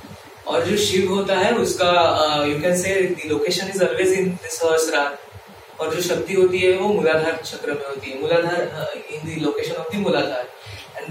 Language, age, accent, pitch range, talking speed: English, 30-49, Indian, 160-205 Hz, 150 wpm